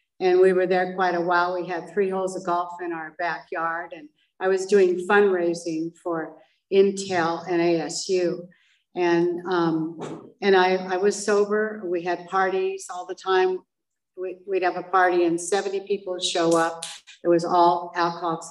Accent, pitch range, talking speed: American, 175-195 Hz, 170 wpm